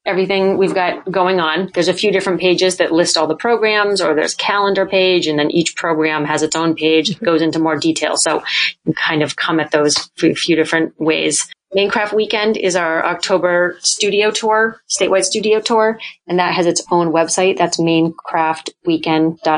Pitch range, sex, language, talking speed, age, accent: 160-190 Hz, female, English, 180 wpm, 30-49, American